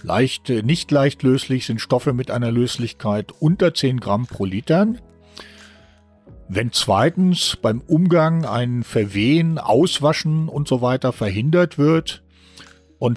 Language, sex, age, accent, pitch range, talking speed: German, male, 50-69, German, 105-150 Hz, 125 wpm